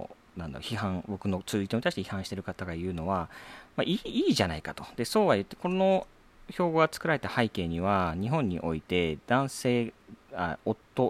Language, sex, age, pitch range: Japanese, male, 40-59, 90-130 Hz